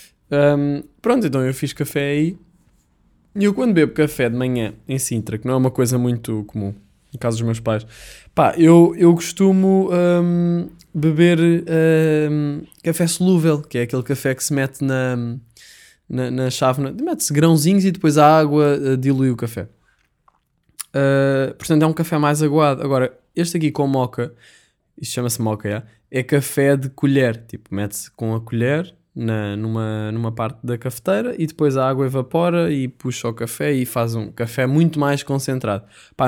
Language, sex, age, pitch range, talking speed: Portuguese, male, 20-39, 130-160 Hz, 170 wpm